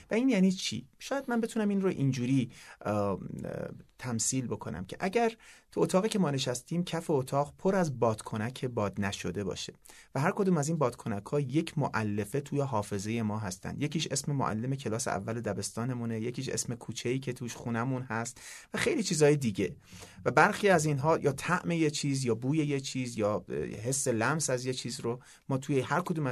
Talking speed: 180 wpm